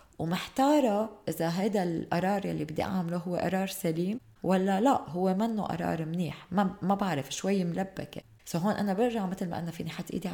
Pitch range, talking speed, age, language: 155-200 Hz, 175 wpm, 20-39, Arabic